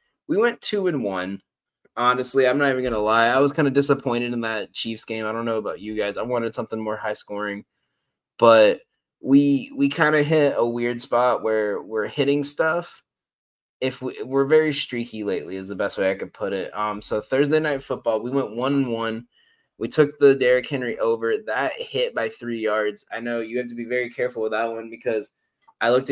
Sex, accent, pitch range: male, American, 110-140 Hz